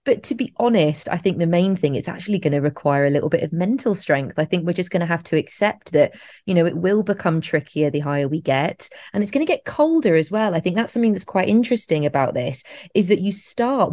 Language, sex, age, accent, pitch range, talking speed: English, female, 20-39, British, 155-190 Hz, 265 wpm